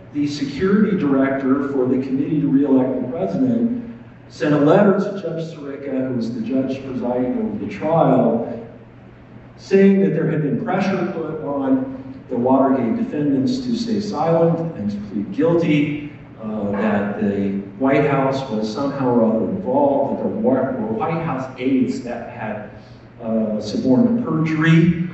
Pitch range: 135-195 Hz